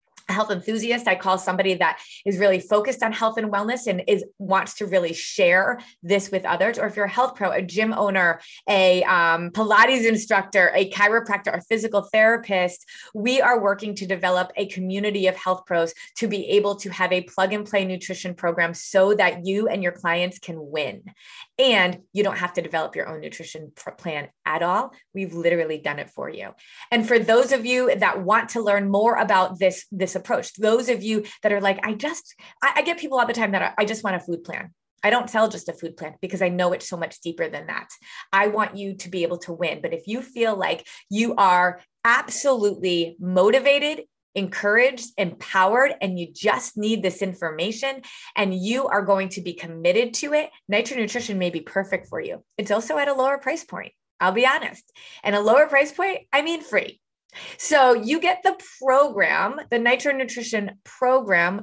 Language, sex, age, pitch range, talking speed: English, female, 20-39, 185-240 Hz, 200 wpm